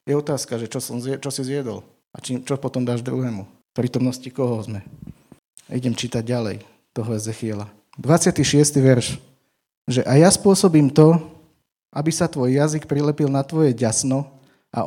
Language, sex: Slovak, male